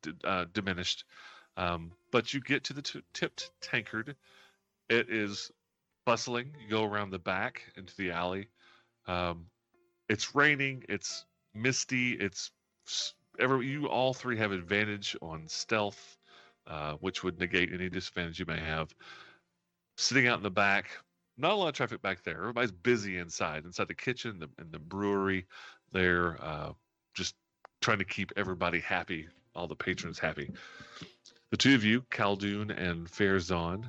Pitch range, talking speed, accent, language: 90-115 Hz, 155 wpm, American, English